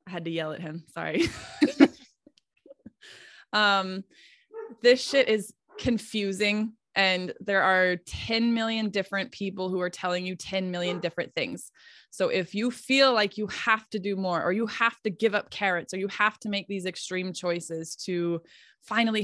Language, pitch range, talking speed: English, 185-225 Hz, 170 wpm